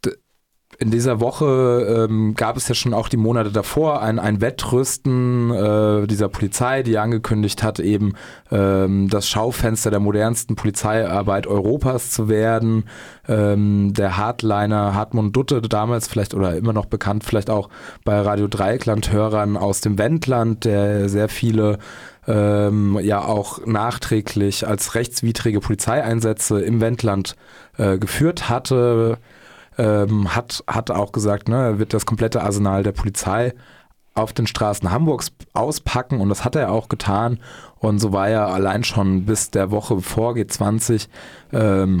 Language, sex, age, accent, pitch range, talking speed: German, male, 20-39, German, 100-115 Hz, 145 wpm